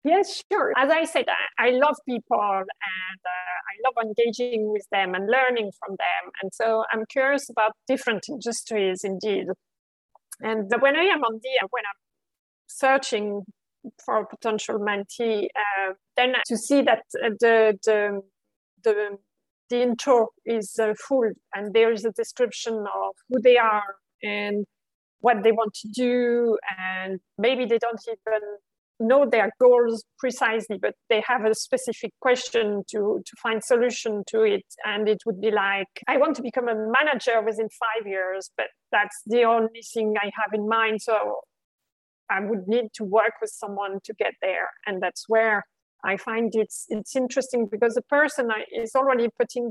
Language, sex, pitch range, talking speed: English, female, 210-245 Hz, 165 wpm